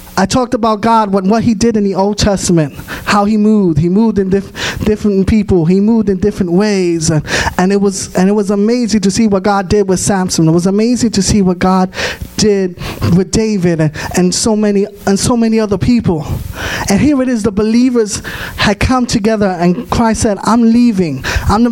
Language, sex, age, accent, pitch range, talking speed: English, male, 20-39, American, 190-230 Hz, 200 wpm